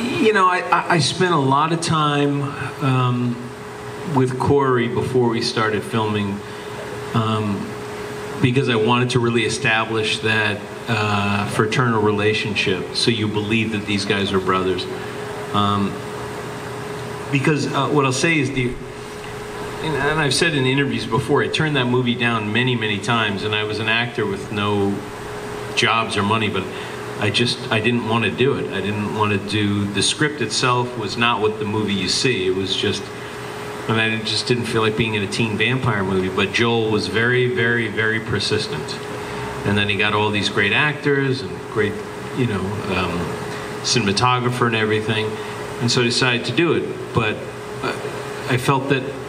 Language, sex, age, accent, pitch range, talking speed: English, male, 40-59, American, 105-130 Hz, 175 wpm